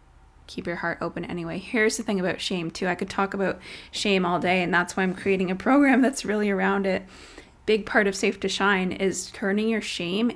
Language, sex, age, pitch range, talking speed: English, female, 20-39, 175-200 Hz, 225 wpm